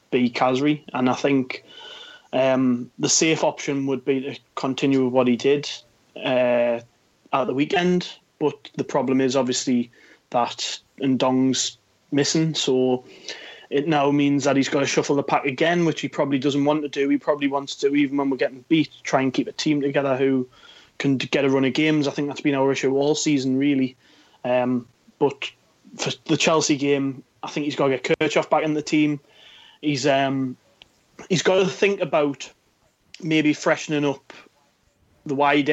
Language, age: English, 20-39